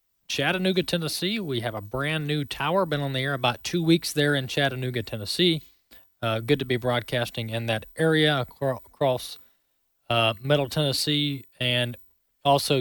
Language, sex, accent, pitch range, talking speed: English, male, American, 125-150 Hz, 155 wpm